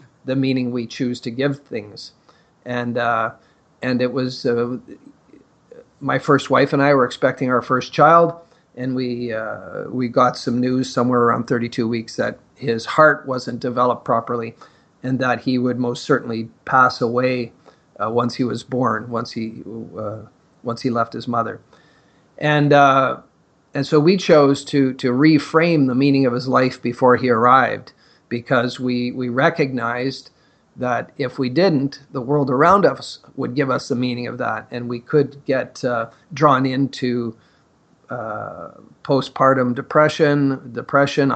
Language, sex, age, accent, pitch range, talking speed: English, male, 40-59, American, 120-145 Hz, 155 wpm